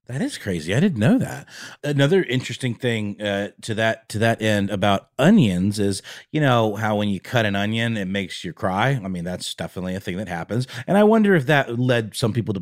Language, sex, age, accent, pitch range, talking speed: English, male, 30-49, American, 100-130 Hz, 230 wpm